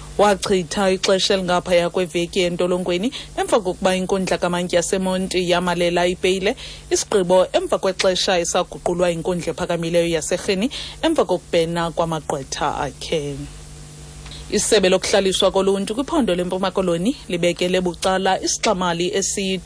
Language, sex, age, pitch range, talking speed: English, female, 30-49, 175-200 Hz, 120 wpm